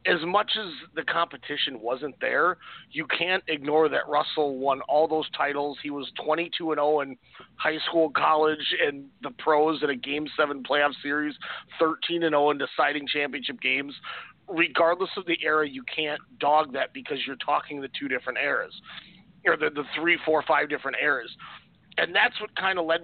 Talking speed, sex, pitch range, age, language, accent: 175 wpm, male, 145-165 Hz, 40-59, English, American